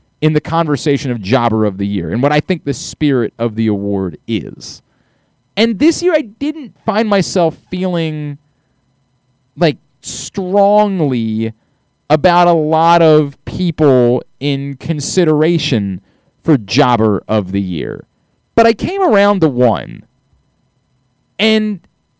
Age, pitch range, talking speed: 30-49, 125-215 Hz, 125 wpm